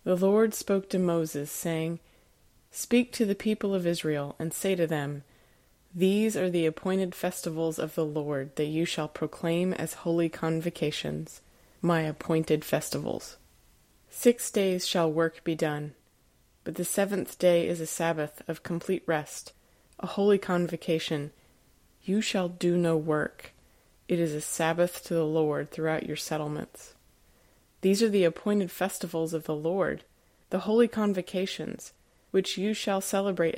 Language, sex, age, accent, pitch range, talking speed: English, female, 20-39, American, 155-190 Hz, 150 wpm